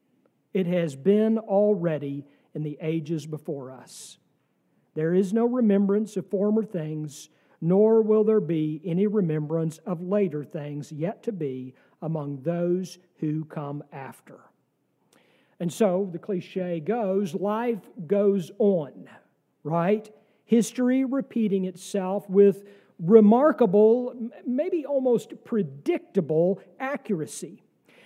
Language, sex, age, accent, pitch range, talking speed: English, male, 50-69, American, 170-240 Hz, 110 wpm